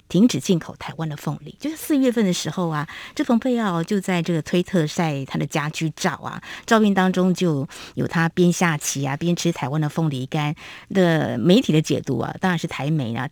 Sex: female